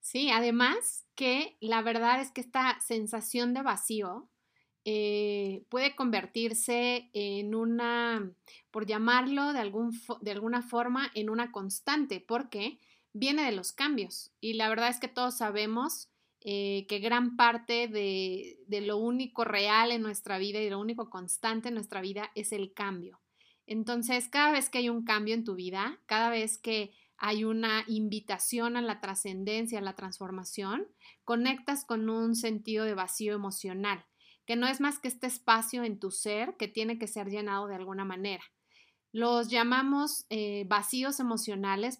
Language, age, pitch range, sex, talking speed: Spanish, 30-49, 205-245 Hz, female, 160 wpm